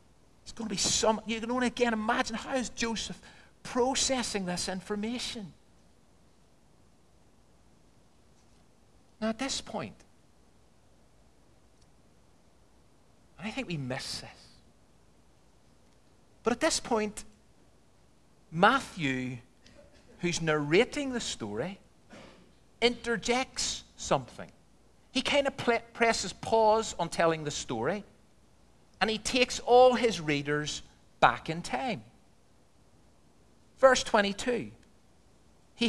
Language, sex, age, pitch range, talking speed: English, male, 50-69, 160-245 Hz, 95 wpm